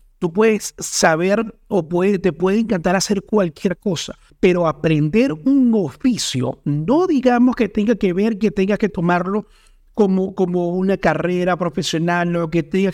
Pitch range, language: 150-185 Hz, Spanish